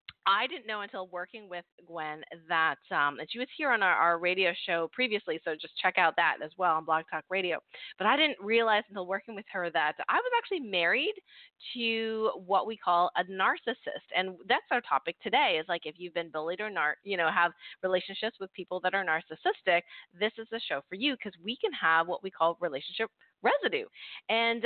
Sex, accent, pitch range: female, American, 180-255 Hz